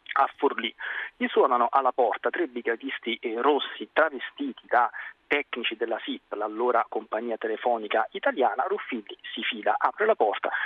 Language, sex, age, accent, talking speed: Italian, male, 40-59, native, 135 wpm